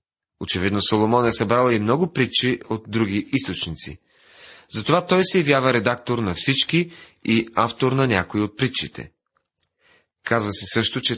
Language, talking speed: Bulgarian, 145 wpm